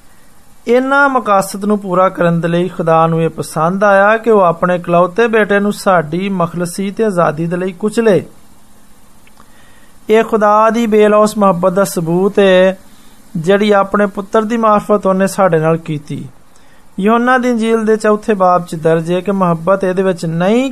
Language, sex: Hindi, male